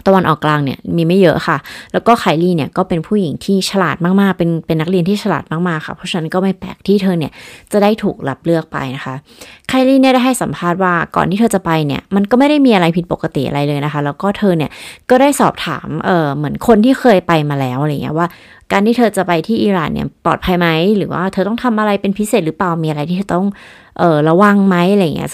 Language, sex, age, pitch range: Thai, female, 30-49, 165-210 Hz